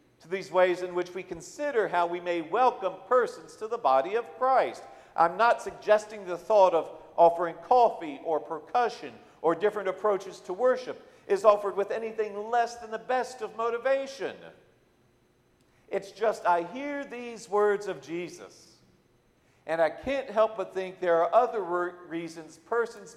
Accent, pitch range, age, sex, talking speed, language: American, 155-250 Hz, 50-69, male, 155 wpm, English